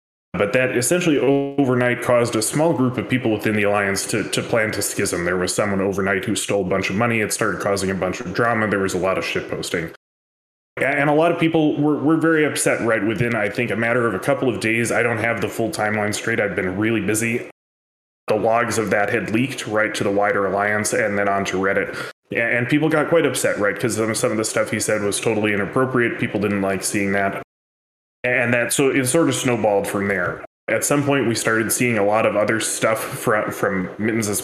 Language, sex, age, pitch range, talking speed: English, male, 20-39, 100-120 Hz, 230 wpm